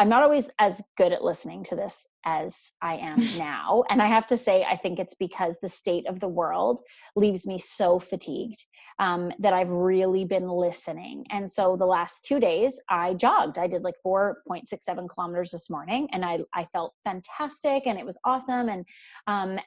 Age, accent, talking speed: 20-39, American, 190 wpm